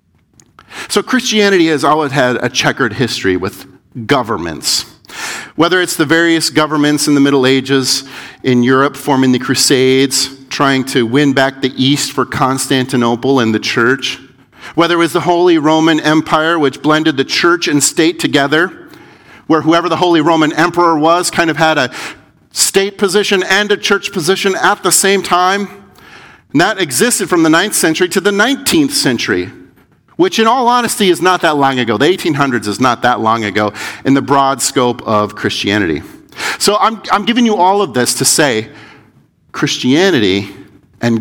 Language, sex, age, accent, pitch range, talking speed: English, male, 50-69, American, 130-180 Hz, 165 wpm